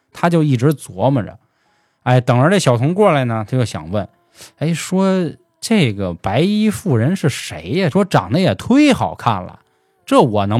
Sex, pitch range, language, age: male, 110-160 Hz, Chinese, 20-39